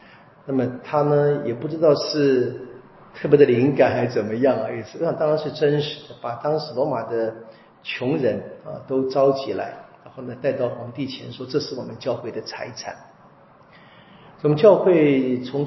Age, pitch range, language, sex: 40-59, 125-175 Hz, Chinese, male